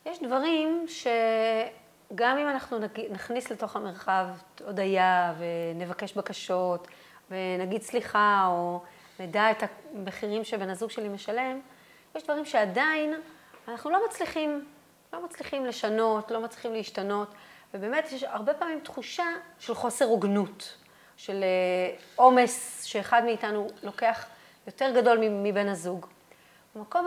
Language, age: Hebrew, 30-49